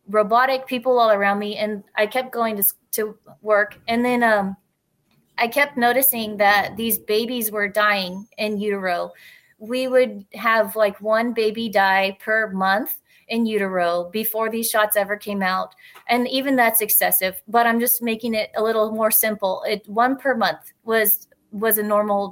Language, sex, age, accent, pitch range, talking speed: English, female, 20-39, American, 205-240 Hz, 170 wpm